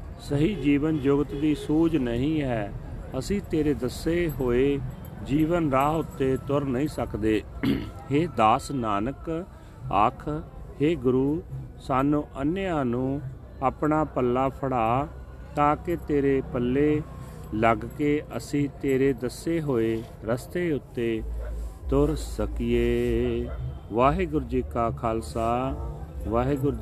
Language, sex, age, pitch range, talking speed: Punjabi, male, 40-59, 115-145 Hz, 105 wpm